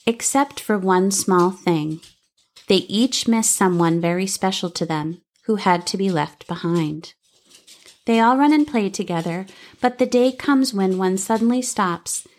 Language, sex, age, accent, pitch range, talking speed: English, female, 30-49, American, 175-215 Hz, 160 wpm